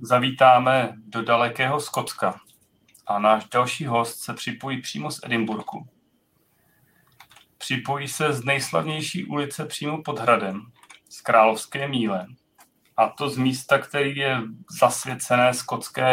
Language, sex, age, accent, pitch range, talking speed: Czech, male, 40-59, native, 115-130 Hz, 120 wpm